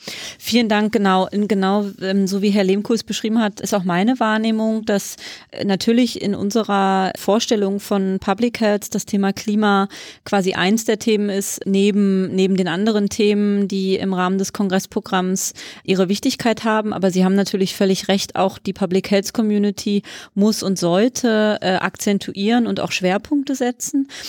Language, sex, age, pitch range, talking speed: German, female, 30-49, 185-210 Hz, 155 wpm